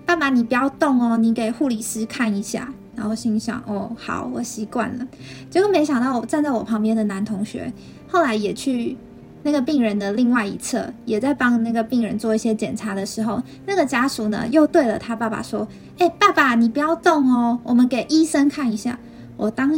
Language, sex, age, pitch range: Chinese, female, 20-39, 220-265 Hz